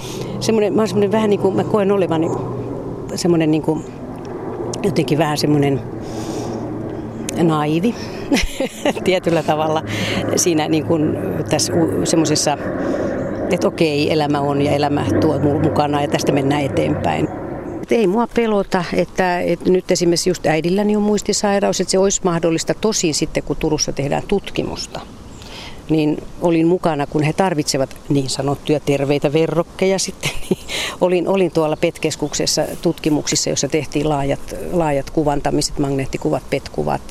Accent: native